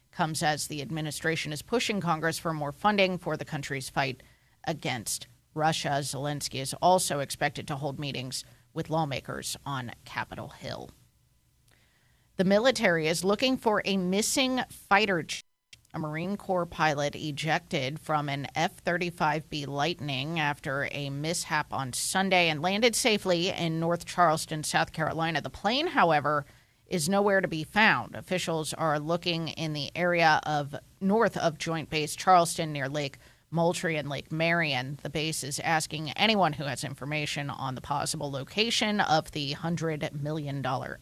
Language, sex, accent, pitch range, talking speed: English, female, American, 145-180 Hz, 150 wpm